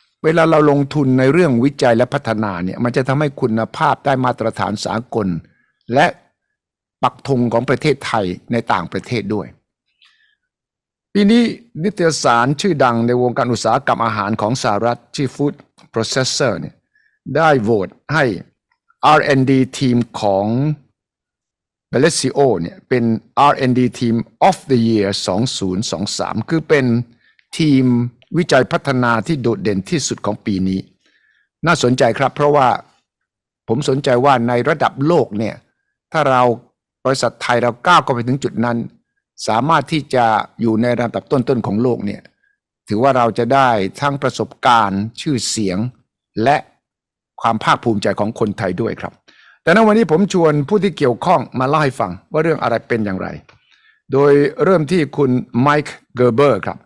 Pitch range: 115-145 Hz